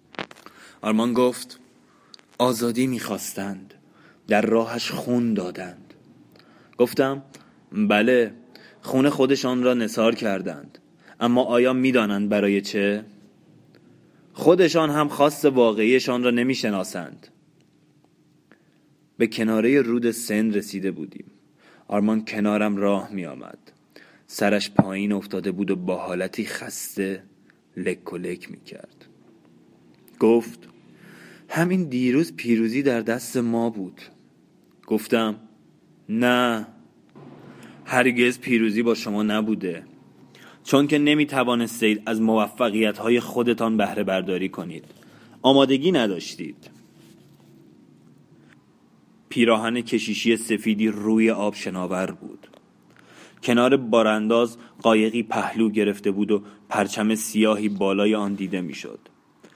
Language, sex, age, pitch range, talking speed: Persian, male, 20-39, 105-125 Hz, 95 wpm